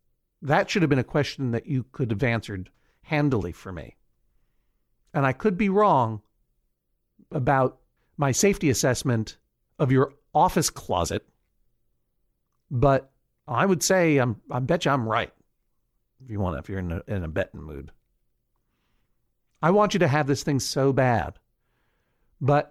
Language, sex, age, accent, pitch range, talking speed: English, male, 50-69, American, 115-150 Hz, 155 wpm